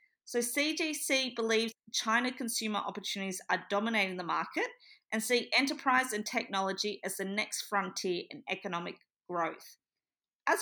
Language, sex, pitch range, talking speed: English, female, 200-260 Hz, 130 wpm